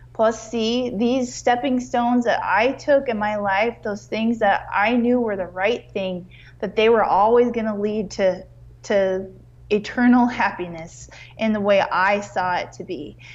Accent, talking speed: American, 170 wpm